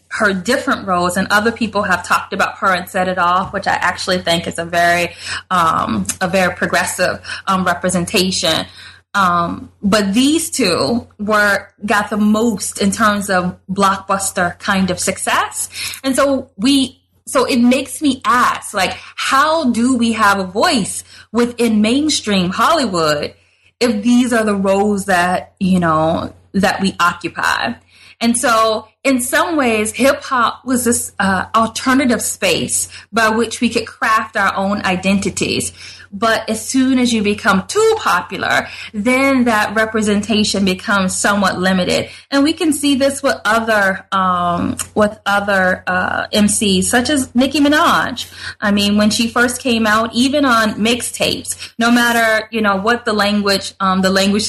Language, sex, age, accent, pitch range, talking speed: English, female, 20-39, American, 190-235 Hz, 155 wpm